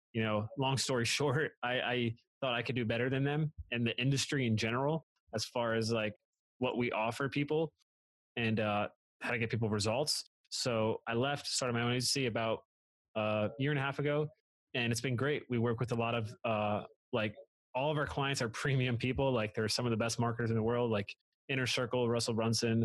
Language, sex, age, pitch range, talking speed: English, male, 20-39, 110-130 Hz, 220 wpm